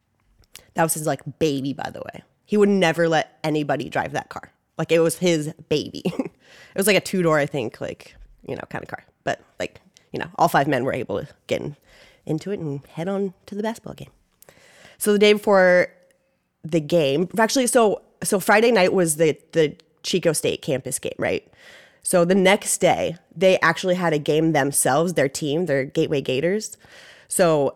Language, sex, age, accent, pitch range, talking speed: English, female, 20-39, American, 150-180 Hz, 190 wpm